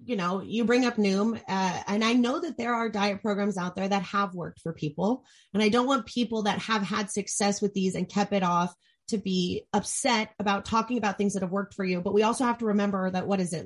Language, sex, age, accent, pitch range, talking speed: English, female, 30-49, American, 190-230 Hz, 260 wpm